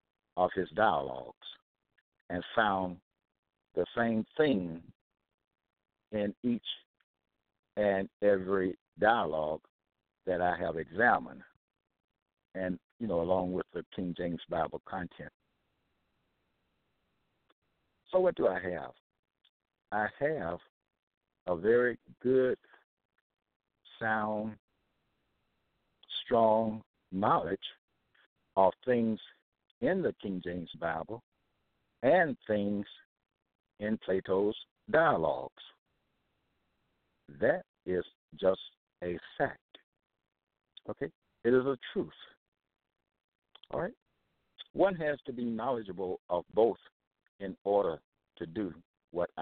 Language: English